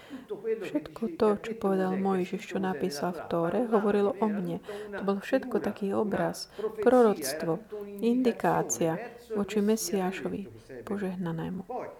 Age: 30-49